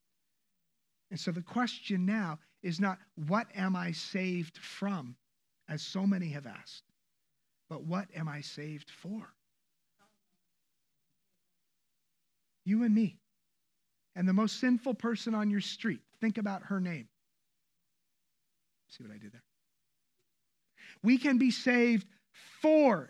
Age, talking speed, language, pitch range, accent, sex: 50-69, 125 wpm, English, 155-215 Hz, American, male